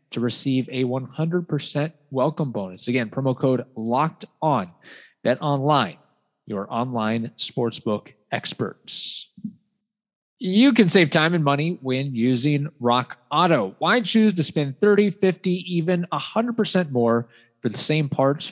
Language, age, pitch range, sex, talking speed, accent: English, 20-39, 125-175 Hz, male, 125 wpm, American